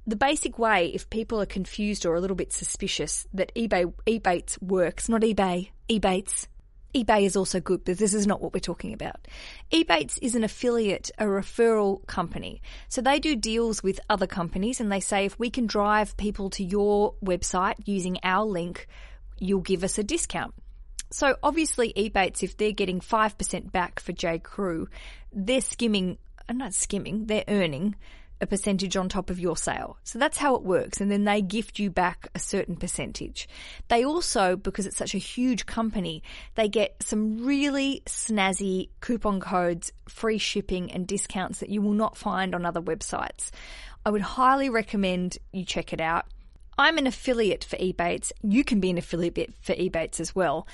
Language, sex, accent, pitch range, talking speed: English, female, Australian, 185-225 Hz, 175 wpm